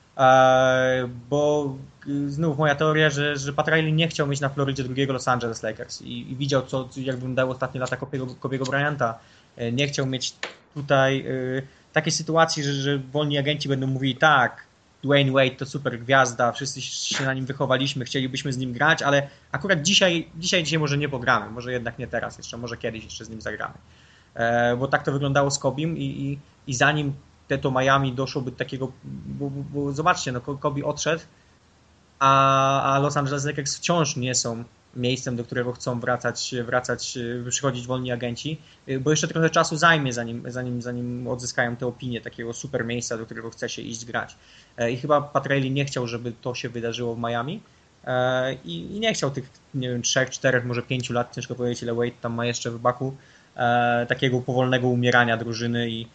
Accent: native